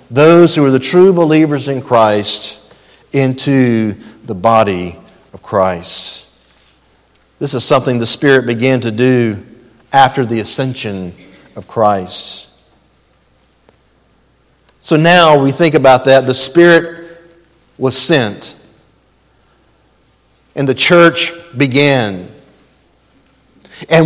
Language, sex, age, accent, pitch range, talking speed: English, male, 50-69, American, 145-230 Hz, 100 wpm